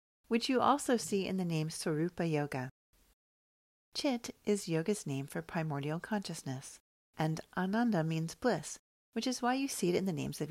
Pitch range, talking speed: 155-205 Hz, 170 wpm